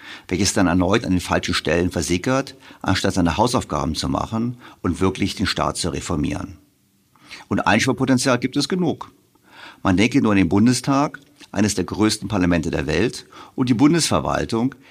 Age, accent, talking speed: 50-69, German, 155 wpm